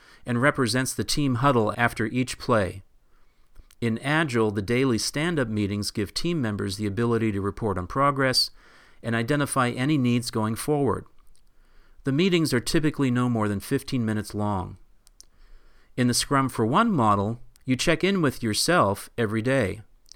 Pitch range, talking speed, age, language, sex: 110-135 Hz, 155 wpm, 40-59, English, male